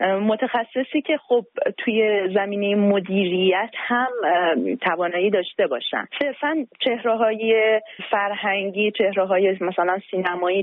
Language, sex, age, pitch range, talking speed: Persian, female, 30-49, 185-235 Hz, 100 wpm